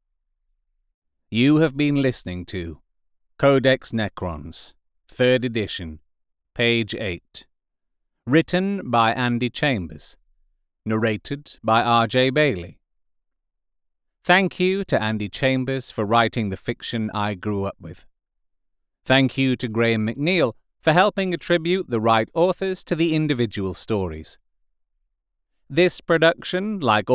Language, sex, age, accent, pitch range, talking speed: English, male, 30-49, British, 105-160 Hz, 110 wpm